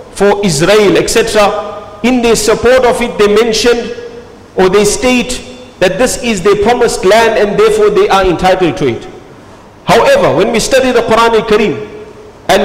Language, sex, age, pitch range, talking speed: English, male, 50-69, 185-230 Hz, 160 wpm